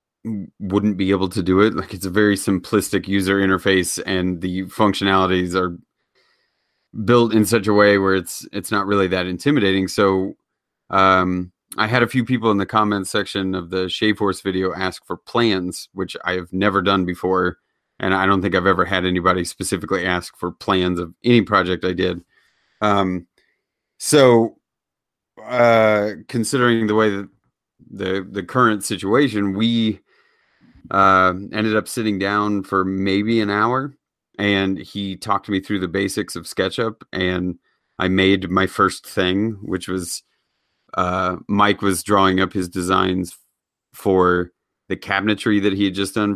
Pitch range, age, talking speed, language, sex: 95-105 Hz, 30-49, 160 wpm, English, male